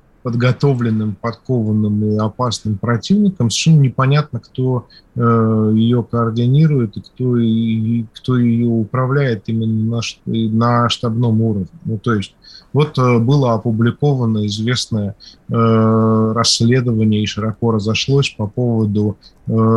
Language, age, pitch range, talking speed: Russian, 20-39, 105-120 Hz, 110 wpm